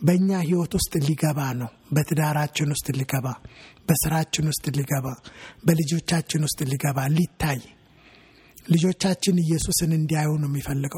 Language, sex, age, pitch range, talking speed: English, male, 60-79, 150-185 Hz, 100 wpm